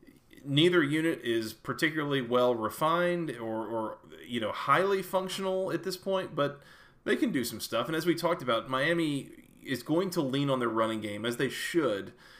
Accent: American